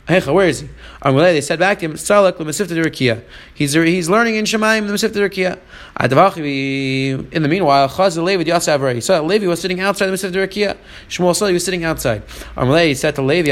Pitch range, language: 145-185 Hz, English